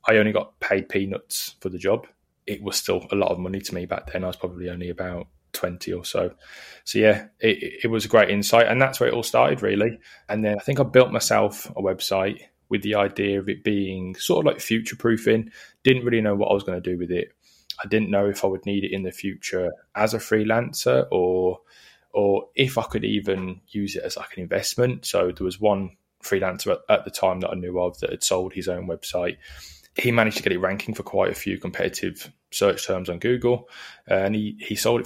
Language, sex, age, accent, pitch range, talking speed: English, male, 20-39, British, 90-110 Hz, 235 wpm